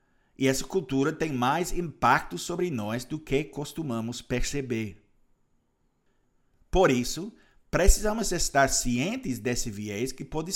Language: Portuguese